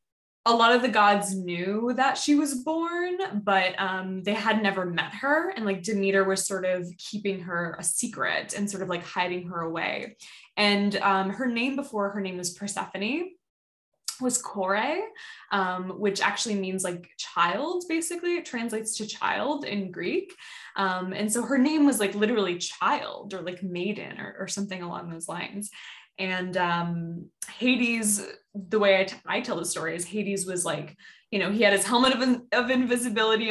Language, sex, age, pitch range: English, female, 10-29, 190-255 Hz